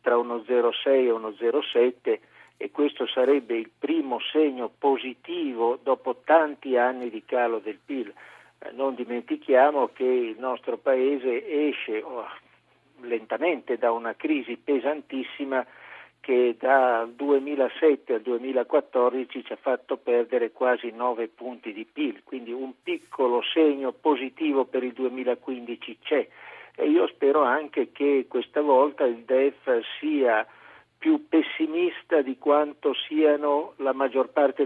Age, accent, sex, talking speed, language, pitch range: 50-69, native, male, 125 wpm, Italian, 125-160 Hz